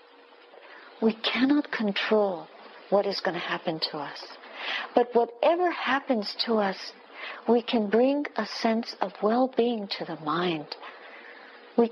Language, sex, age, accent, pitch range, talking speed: English, female, 60-79, American, 200-275 Hz, 130 wpm